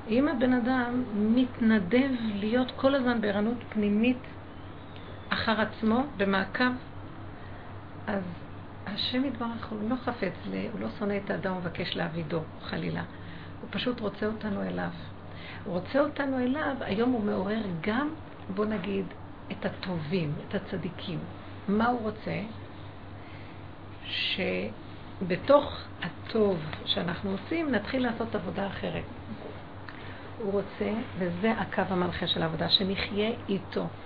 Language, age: Hebrew, 50-69